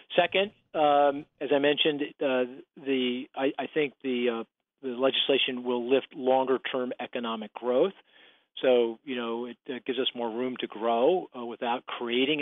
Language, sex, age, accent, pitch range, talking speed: English, male, 40-59, American, 115-140 Hz, 160 wpm